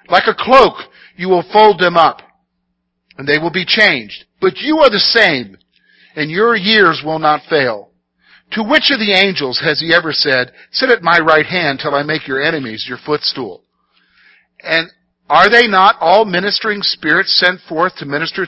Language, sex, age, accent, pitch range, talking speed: English, male, 50-69, American, 135-205 Hz, 180 wpm